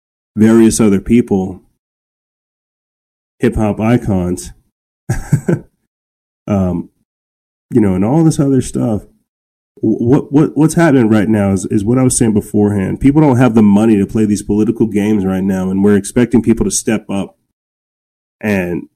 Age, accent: 30-49, American